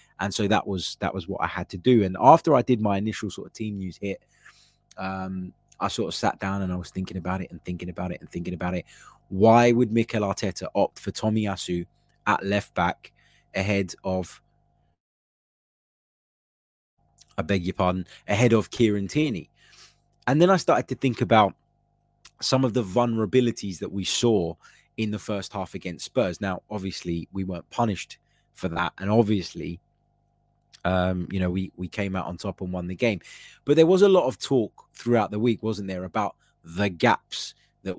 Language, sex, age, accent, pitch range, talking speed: English, male, 20-39, British, 95-120 Hz, 190 wpm